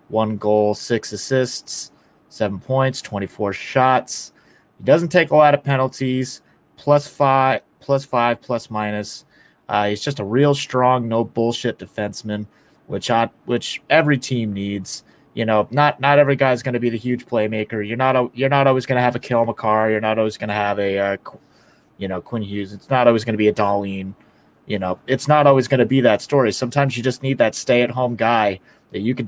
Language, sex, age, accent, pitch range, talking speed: English, male, 30-49, American, 105-130 Hz, 210 wpm